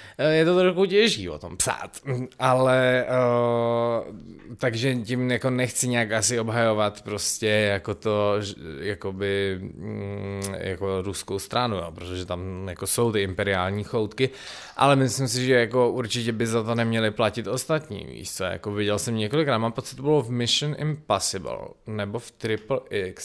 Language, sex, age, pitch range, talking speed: Czech, male, 20-39, 105-140 Hz, 155 wpm